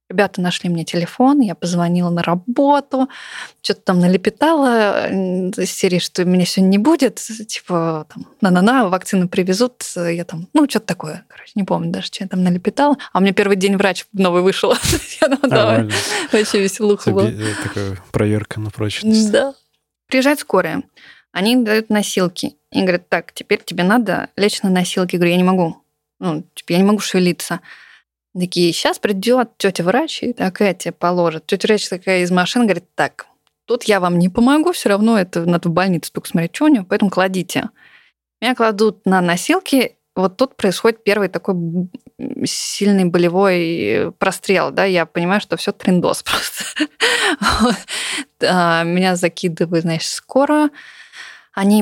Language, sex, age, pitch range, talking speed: Russian, female, 20-39, 175-235 Hz, 150 wpm